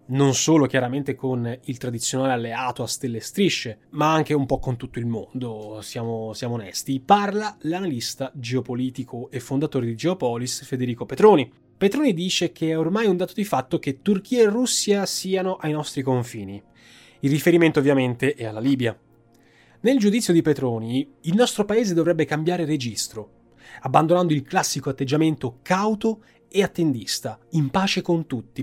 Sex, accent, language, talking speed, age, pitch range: male, native, Italian, 155 wpm, 20-39, 130-180 Hz